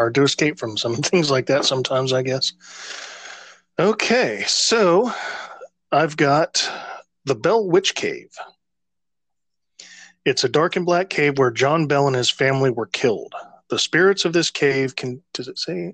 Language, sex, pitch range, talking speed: English, male, 125-150 Hz, 160 wpm